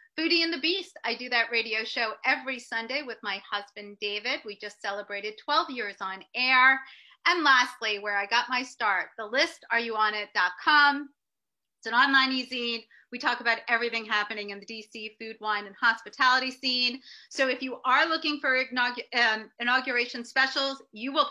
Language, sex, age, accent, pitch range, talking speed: English, female, 30-49, American, 220-280 Hz, 165 wpm